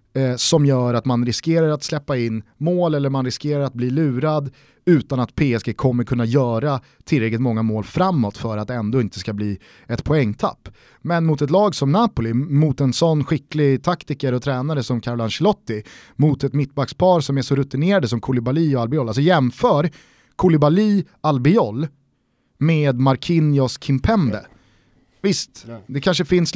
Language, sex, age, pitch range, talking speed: Swedish, male, 30-49, 125-160 Hz, 160 wpm